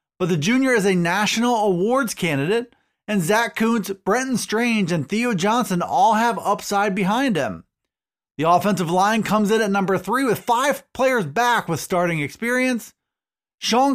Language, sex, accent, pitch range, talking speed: English, male, American, 195-245 Hz, 160 wpm